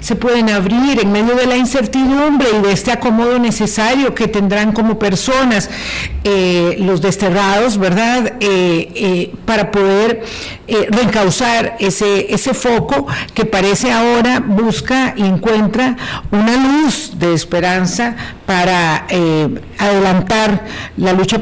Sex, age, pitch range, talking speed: female, 50-69, 190-235 Hz, 125 wpm